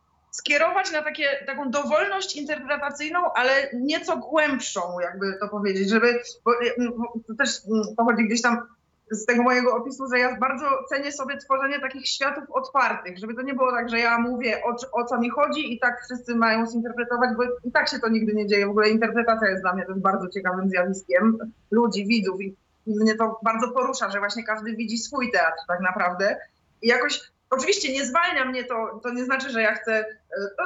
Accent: native